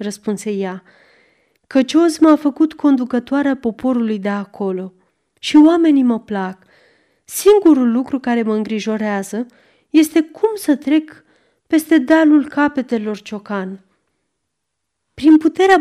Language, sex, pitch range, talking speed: Romanian, female, 205-290 Hz, 110 wpm